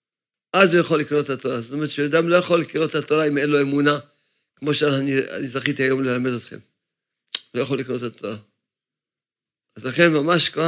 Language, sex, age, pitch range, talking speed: Hebrew, male, 50-69, 135-165 Hz, 185 wpm